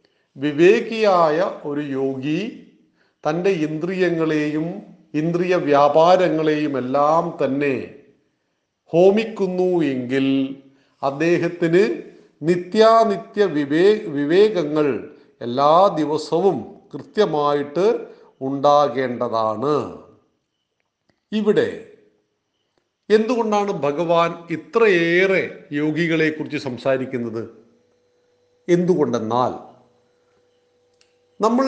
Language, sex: Malayalam, male